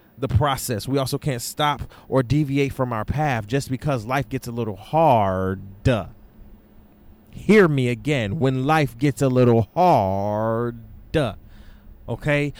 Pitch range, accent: 115-165 Hz, American